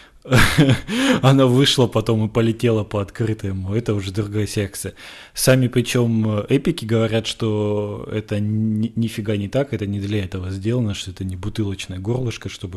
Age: 20-39